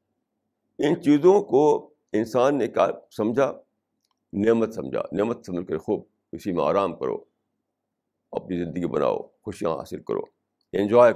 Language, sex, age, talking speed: Urdu, male, 50-69, 130 wpm